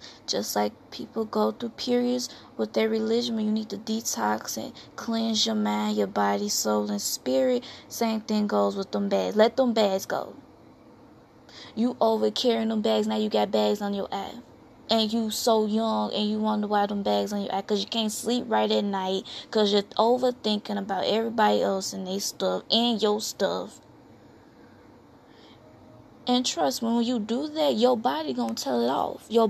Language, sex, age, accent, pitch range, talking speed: English, female, 20-39, American, 190-240 Hz, 185 wpm